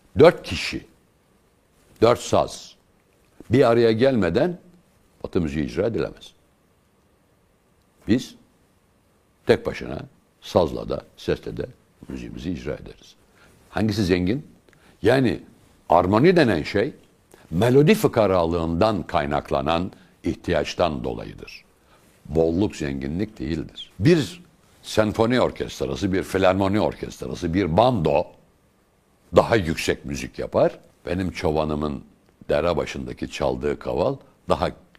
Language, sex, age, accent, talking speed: Turkish, male, 60-79, native, 90 wpm